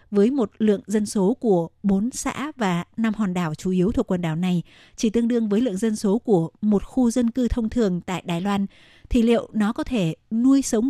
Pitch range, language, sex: 185-220 Hz, Vietnamese, female